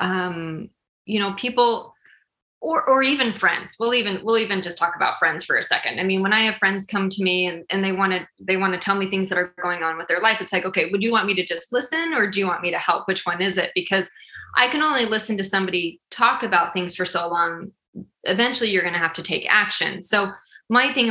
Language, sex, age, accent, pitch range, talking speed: English, female, 20-39, American, 180-215 Hz, 260 wpm